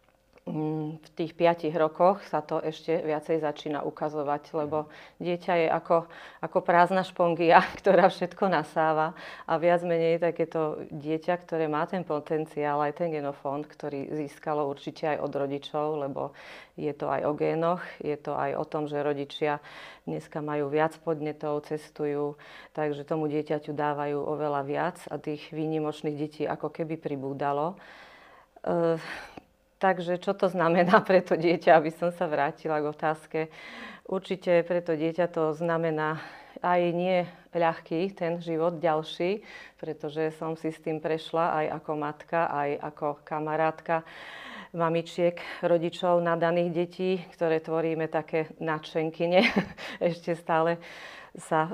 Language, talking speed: Slovak, 140 wpm